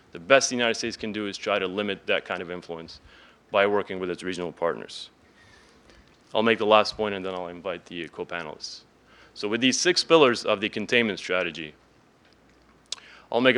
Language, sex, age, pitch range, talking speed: English, male, 30-49, 95-120 Hz, 190 wpm